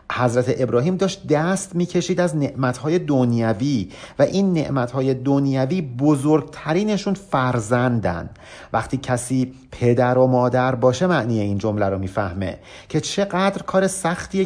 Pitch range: 115-160 Hz